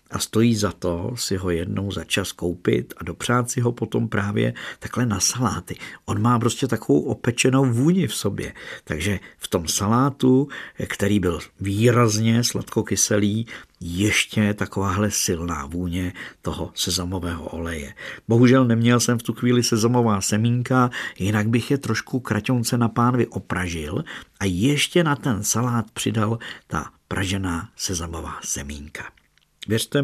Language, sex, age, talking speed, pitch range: Czech, male, 50-69, 140 wpm, 100-120 Hz